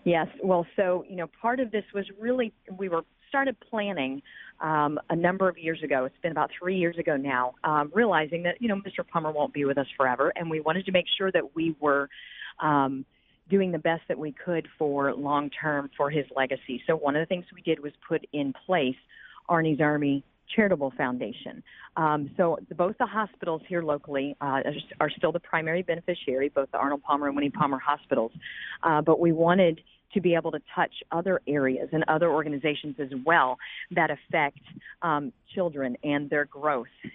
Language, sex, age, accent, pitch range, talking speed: English, female, 40-59, American, 145-175 Hz, 195 wpm